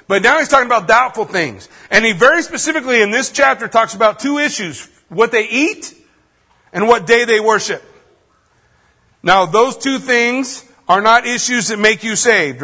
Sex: male